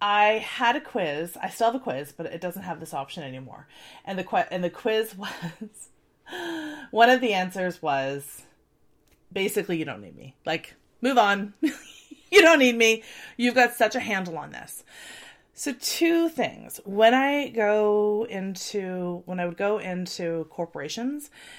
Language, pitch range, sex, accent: English, 180-255 Hz, female, American